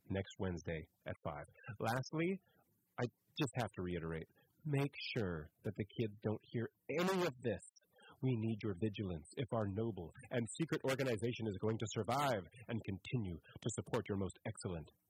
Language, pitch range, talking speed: English, 95-140 Hz, 165 wpm